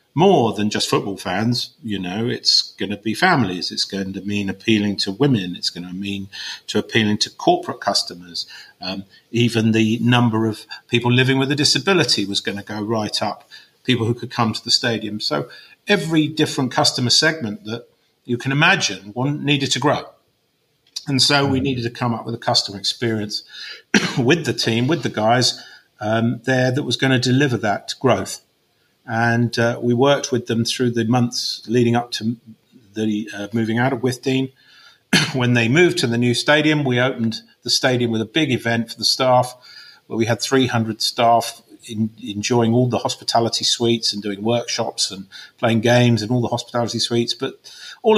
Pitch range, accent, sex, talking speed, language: 110-130 Hz, British, male, 185 wpm, English